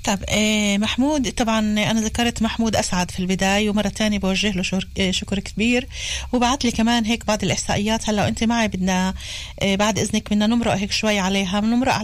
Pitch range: 195-230 Hz